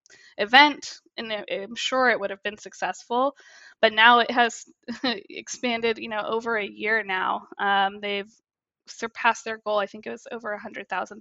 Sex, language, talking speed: female, English, 175 wpm